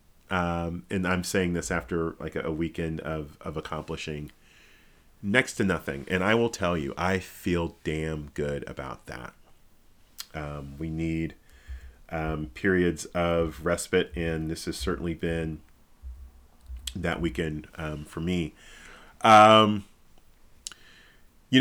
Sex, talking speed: male, 125 wpm